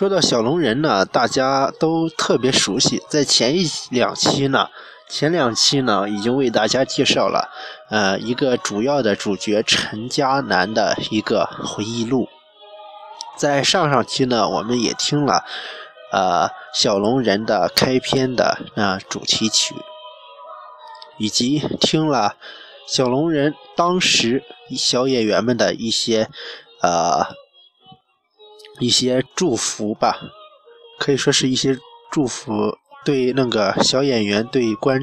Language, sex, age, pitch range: Chinese, male, 20-39, 120-180 Hz